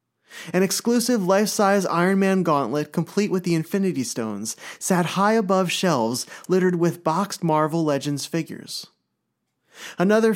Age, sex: 30-49, male